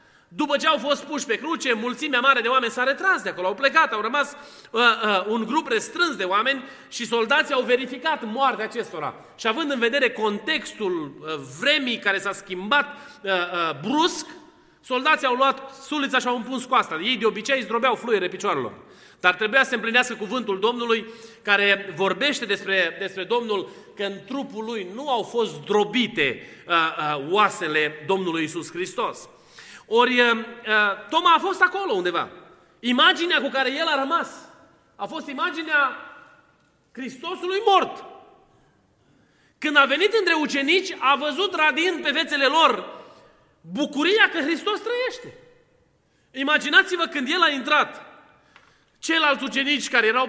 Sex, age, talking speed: male, 30-49, 155 wpm